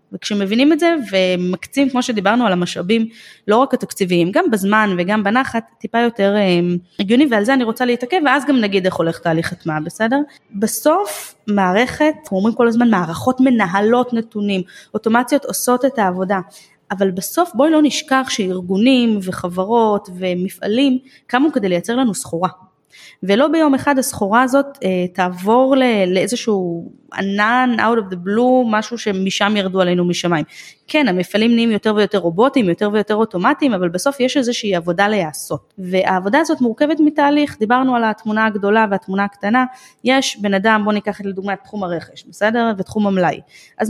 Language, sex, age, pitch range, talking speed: Hebrew, female, 20-39, 185-250 Hz, 150 wpm